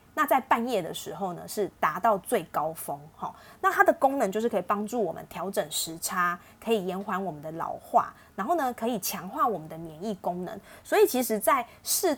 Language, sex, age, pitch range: Chinese, female, 20-39, 185-240 Hz